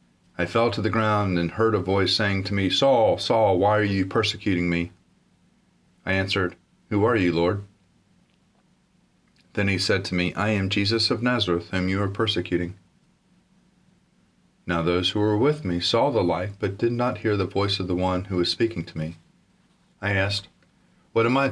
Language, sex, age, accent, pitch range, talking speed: English, male, 40-59, American, 90-115 Hz, 185 wpm